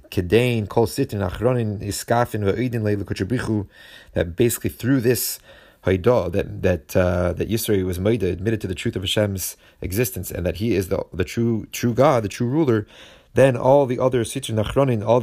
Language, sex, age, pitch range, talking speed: English, male, 30-49, 95-115 Hz, 140 wpm